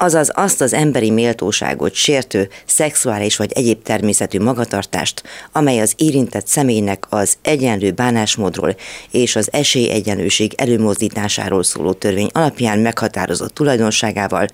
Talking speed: 110 wpm